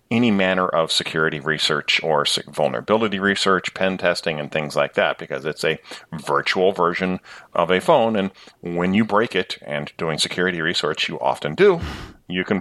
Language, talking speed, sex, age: English, 170 wpm, male, 40-59